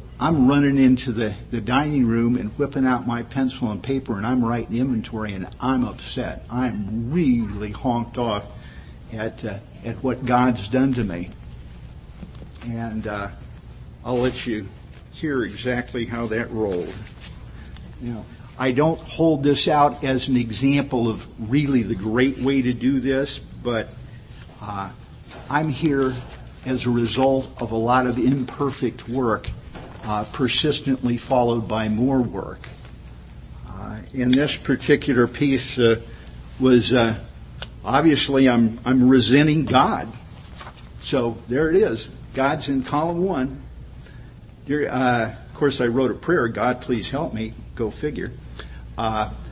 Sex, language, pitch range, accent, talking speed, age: male, English, 110-135 Hz, American, 140 wpm, 50-69